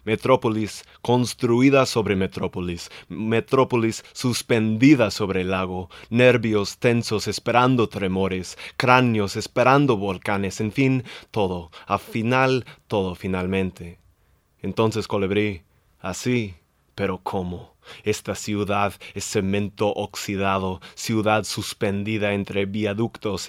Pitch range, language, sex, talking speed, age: 95-115 Hz, English, male, 95 wpm, 20-39